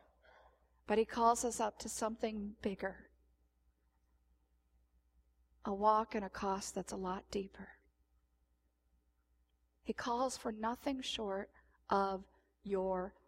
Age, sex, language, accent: 40-59, female, English, American